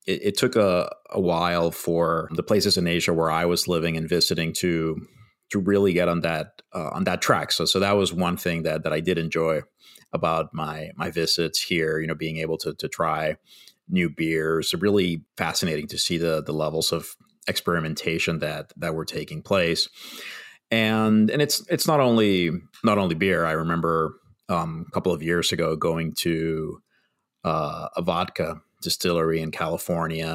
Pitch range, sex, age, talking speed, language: 80-90 Hz, male, 30-49, 180 wpm, English